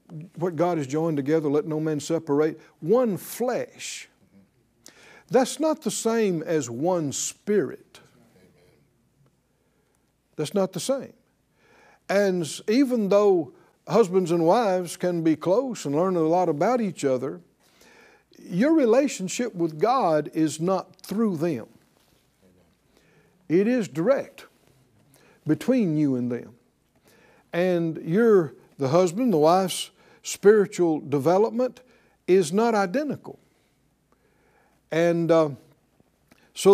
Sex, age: male, 60-79